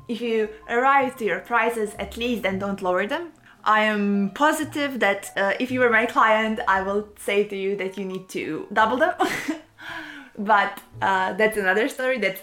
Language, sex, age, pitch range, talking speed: English, female, 20-39, 200-260 Hz, 190 wpm